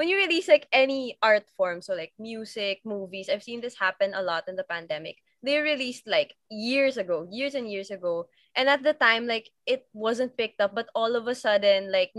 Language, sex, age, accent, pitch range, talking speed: English, female, 20-39, Filipino, 200-270 Hz, 215 wpm